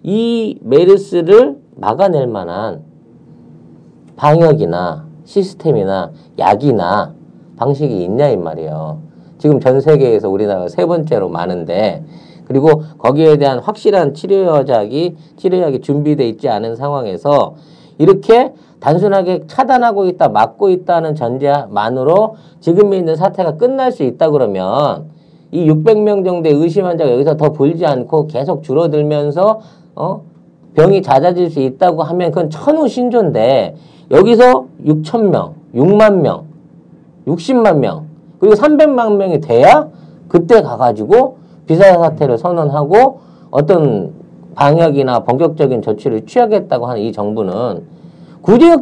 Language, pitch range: Korean, 140-195 Hz